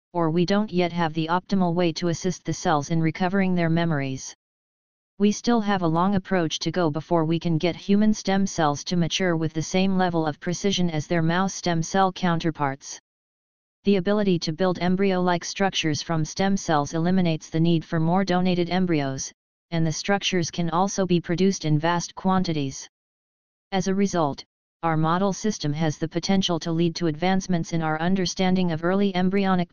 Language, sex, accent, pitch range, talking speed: English, female, American, 165-190 Hz, 185 wpm